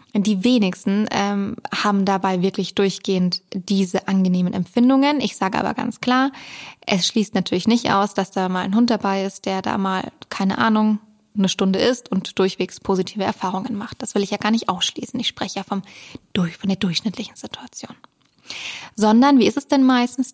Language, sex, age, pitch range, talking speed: German, female, 20-39, 195-245 Hz, 185 wpm